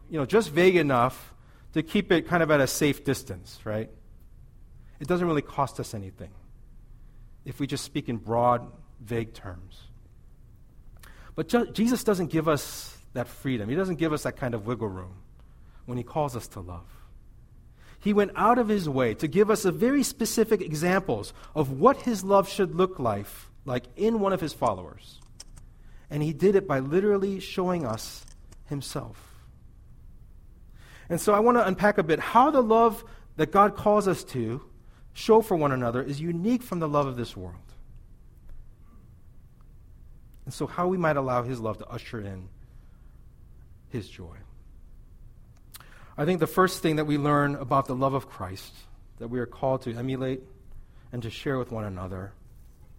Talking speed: 170 wpm